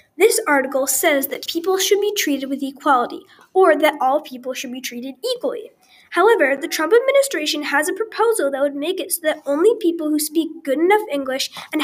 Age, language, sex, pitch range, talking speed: 10-29, English, female, 275-370 Hz, 200 wpm